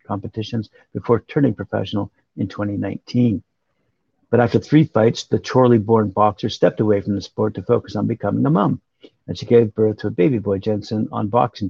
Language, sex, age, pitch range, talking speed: English, male, 50-69, 105-120 Hz, 185 wpm